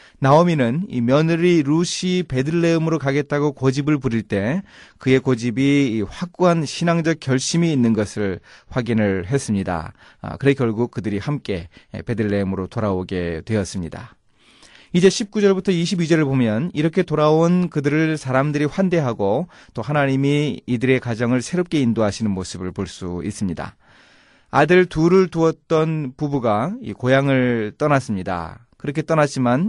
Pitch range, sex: 110-160 Hz, male